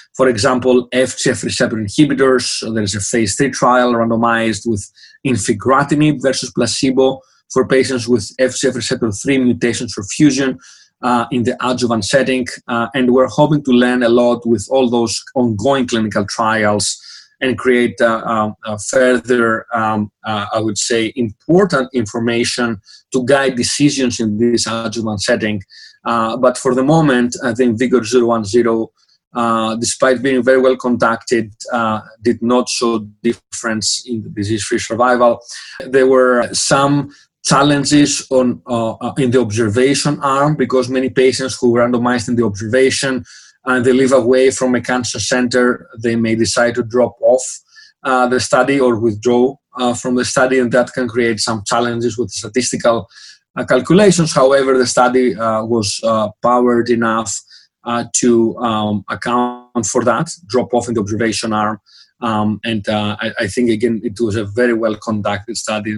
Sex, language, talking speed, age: male, English, 155 wpm, 30-49